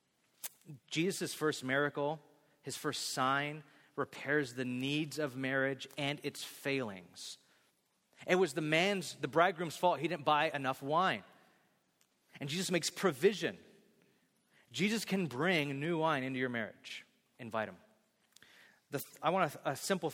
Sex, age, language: male, 30-49, English